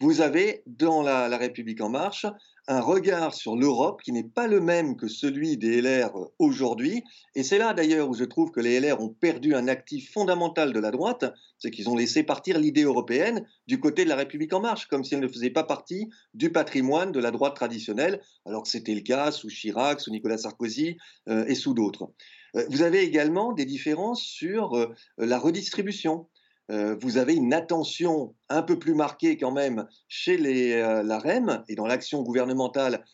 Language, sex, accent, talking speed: French, male, French, 195 wpm